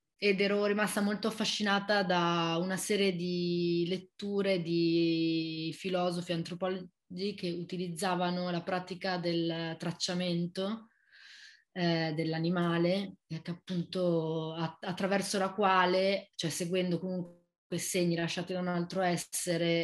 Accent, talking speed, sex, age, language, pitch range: native, 115 wpm, female, 20-39, Italian, 170-195 Hz